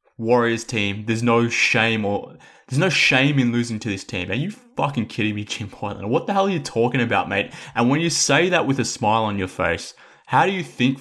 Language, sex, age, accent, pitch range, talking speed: English, male, 20-39, Australian, 105-125 Hz, 240 wpm